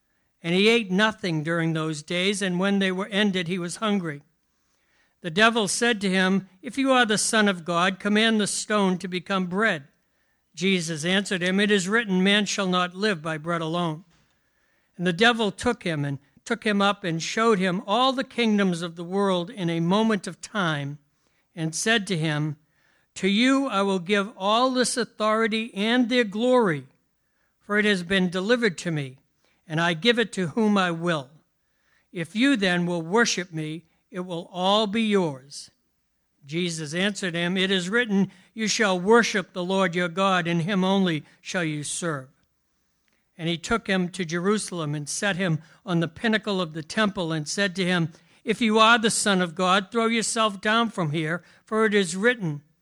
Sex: male